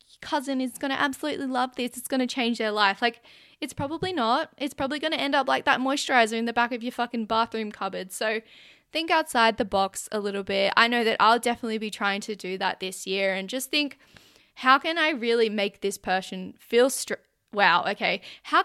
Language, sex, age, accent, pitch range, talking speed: English, female, 10-29, Australian, 205-275 Hz, 220 wpm